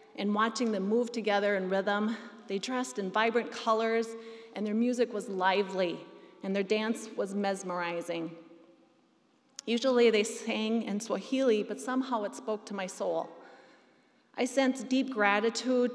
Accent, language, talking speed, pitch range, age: American, English, 145 wpm, 195-230 Hz, 30-49